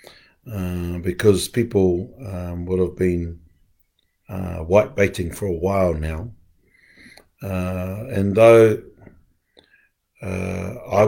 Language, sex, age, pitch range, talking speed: English, male, 50-69, 90-105 Hz, 95 wpm